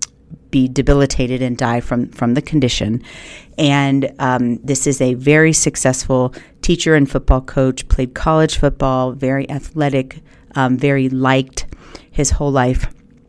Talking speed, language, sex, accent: 135 wpm, English, female, American